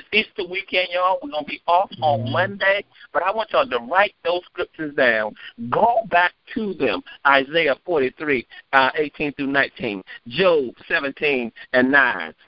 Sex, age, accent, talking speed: male, 50-69, American, 150 wpm